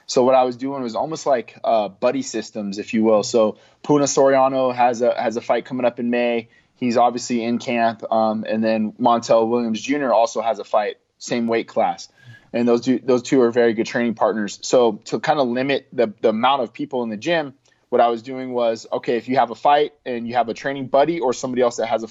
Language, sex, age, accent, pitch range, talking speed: English, male, 20-39, American, 115-130 Hz, 240 wpm